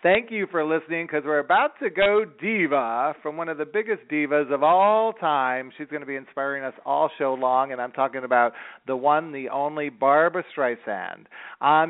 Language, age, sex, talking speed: English, 40-59, male, 195 wpm